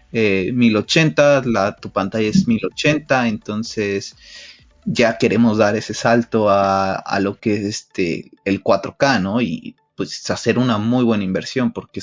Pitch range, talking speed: 100-120 Hz, 150 wpm